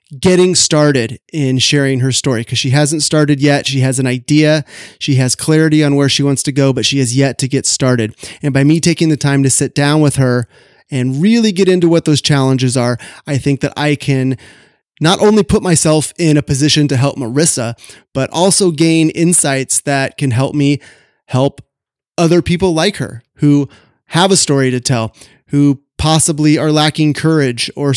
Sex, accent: male, American